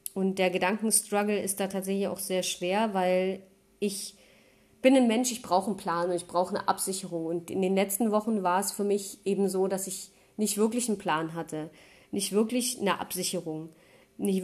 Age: 30-49